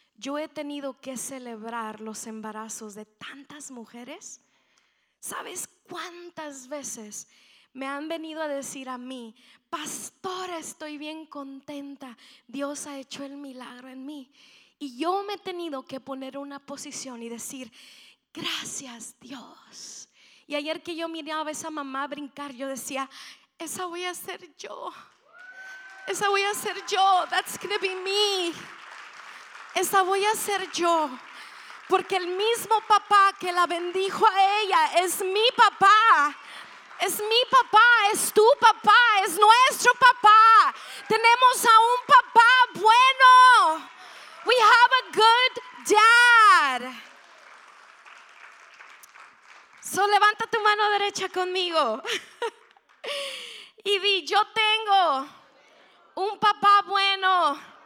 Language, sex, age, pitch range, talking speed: Spanish, female, 20-39, 280-415 Hz, 125 wpm